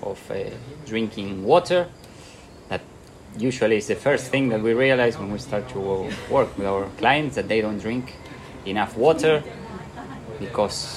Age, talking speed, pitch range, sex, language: 20-39, 155 wpm, 100-135 Hz, male, English